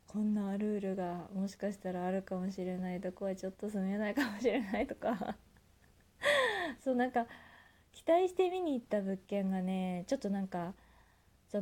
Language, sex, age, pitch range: Japanese, female, 20-39, 175-225 Hz